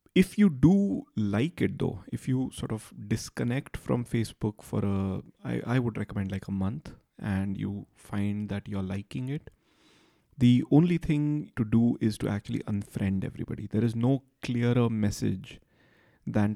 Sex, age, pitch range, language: male, 30-49, 100-125 Hz, English